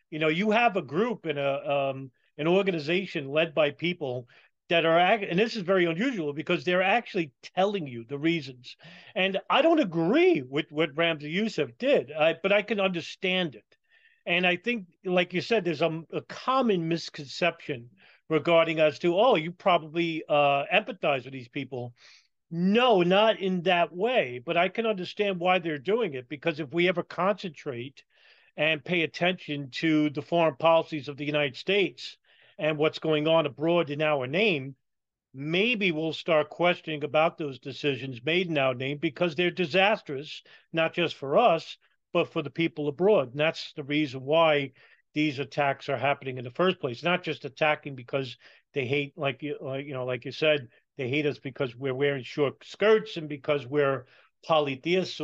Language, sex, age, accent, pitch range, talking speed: English, male, 40-59, American, 145-180 Hz, 175 wpm